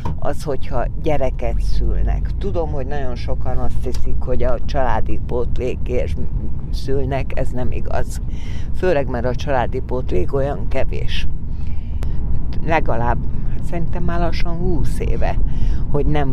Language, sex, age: Hungarian, female, 60-79